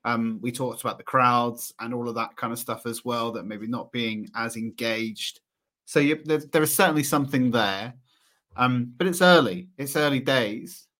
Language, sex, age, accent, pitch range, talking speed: English, male, 30-49, British, 115-140 Hz, 195 wpm